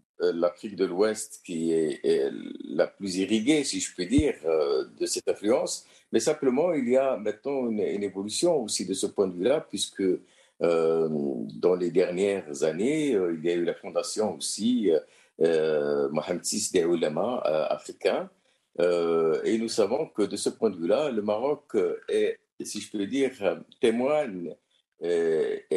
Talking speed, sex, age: 165 wpm, male, 50-69